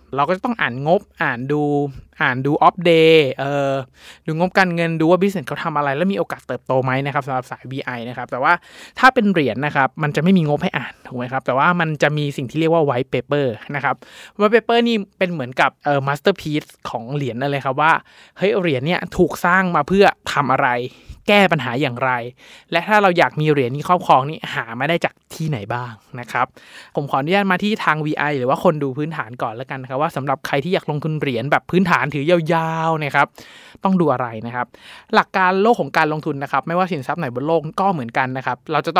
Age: 20-39